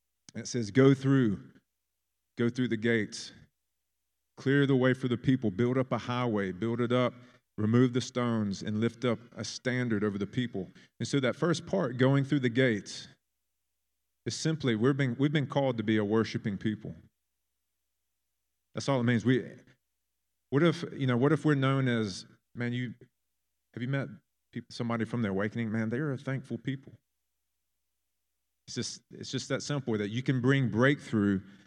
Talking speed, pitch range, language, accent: 180 wpm, 100-130 Hz, English, American